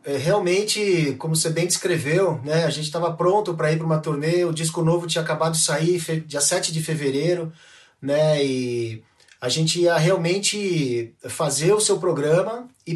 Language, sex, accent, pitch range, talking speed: Portuguese, male, Brazilian, 155-190 Hz, 170 wpm